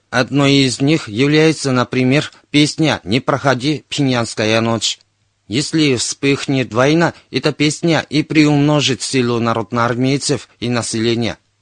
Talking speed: 110 wpm